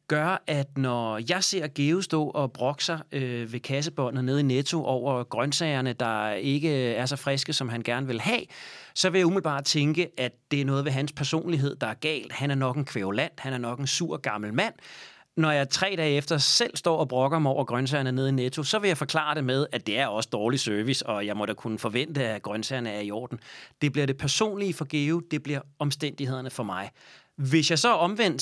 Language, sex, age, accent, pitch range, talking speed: Danish, male, 30-49, native, 120-155 Hz, 220 wpm